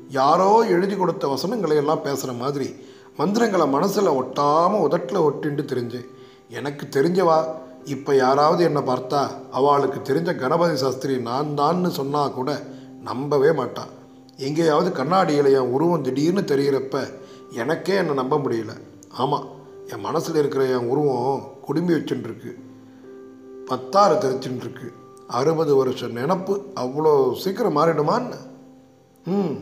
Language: Tamil